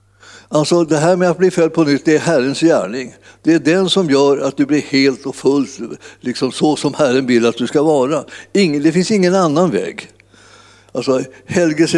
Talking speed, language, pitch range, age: 205 wpm, Swedish, 135-165 Hz, 60-79